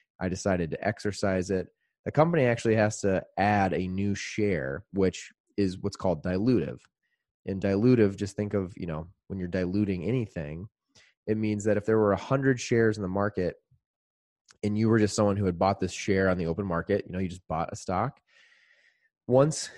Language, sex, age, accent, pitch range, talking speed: English, male, 20-39, American, 90-105 Hz, 195 wpm